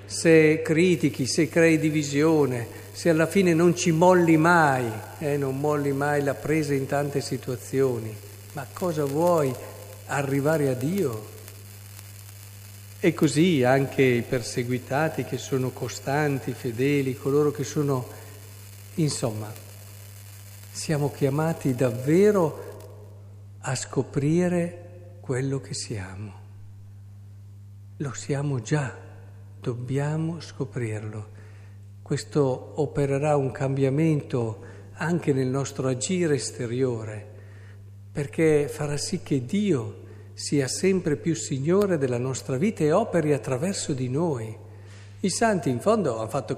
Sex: male